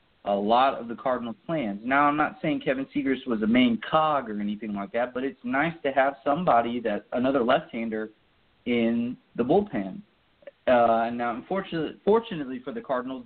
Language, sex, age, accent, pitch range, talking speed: English, male, 30-49, American, 115-180 Hz, 175 wpm